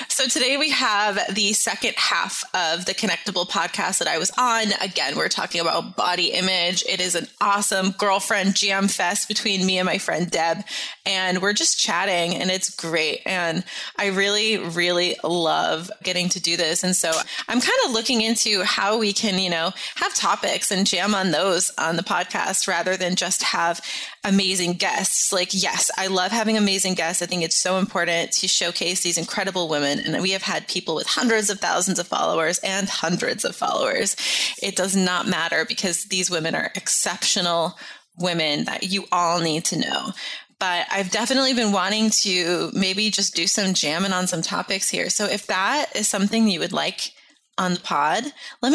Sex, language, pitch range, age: female, English, 175-210 Hz, 20-39